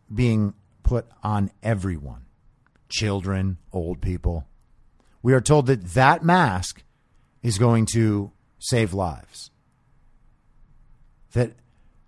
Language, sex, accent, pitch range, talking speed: English, male, American, 95-125 Hz, 95 wpm